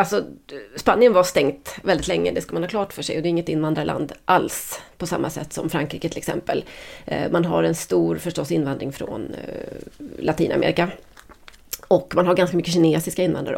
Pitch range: 155-180 Hz